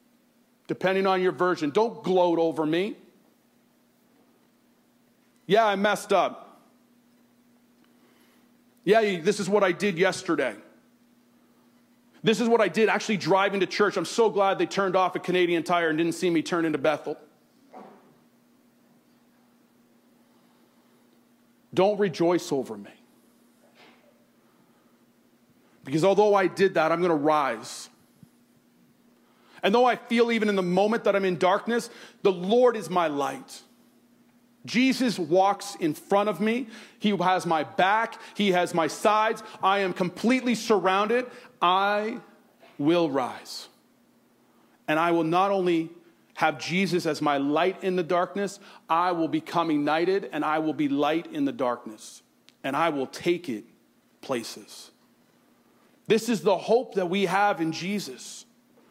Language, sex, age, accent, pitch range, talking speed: English, male, 40-59, American, 170-225 Hz, 140 wpm